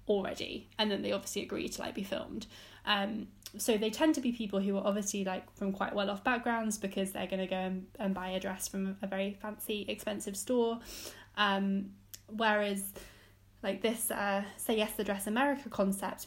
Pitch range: 195-230 Hz